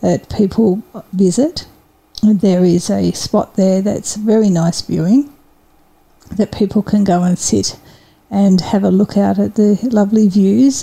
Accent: Australian